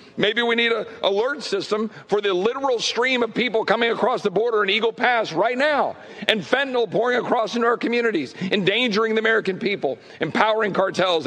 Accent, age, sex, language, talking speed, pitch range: American, 50-69, male, English, 180 wpm, 175-235 Hz